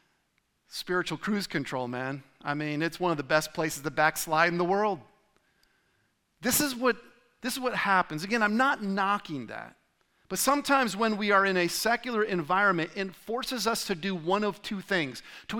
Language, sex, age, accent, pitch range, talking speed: English, male, 40-59, American, 165-230 Hz, 185 wpm